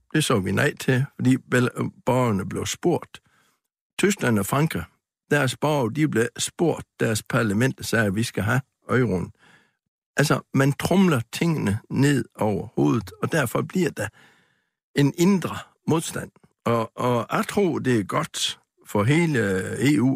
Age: 60-79